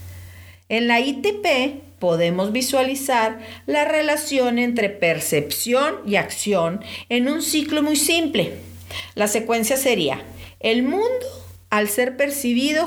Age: 50-69